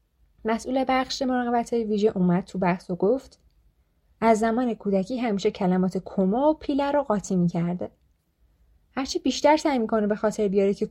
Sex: female